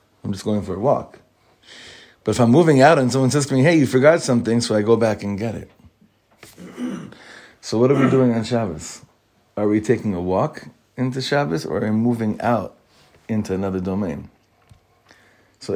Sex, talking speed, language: male, 190 wpm, English